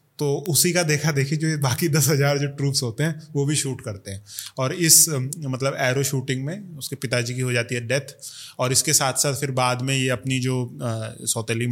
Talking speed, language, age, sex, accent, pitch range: 220 wpm, Hindi, 20-39, male, native, 120-150 Hz